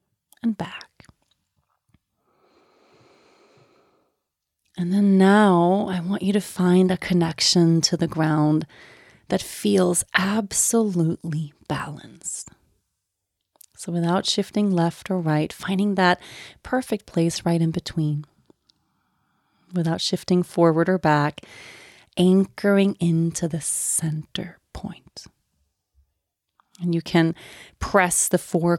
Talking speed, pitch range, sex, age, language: 100 wpm, 160-190 Hz, female, 30-49, English